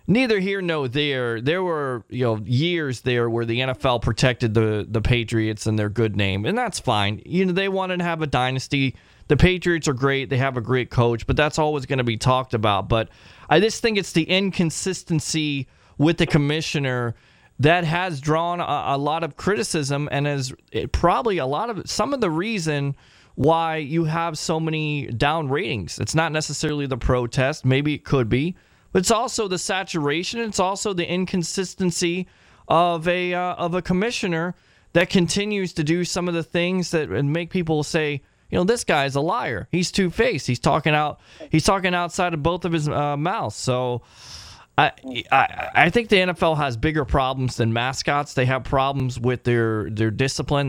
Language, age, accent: English, 20-39, American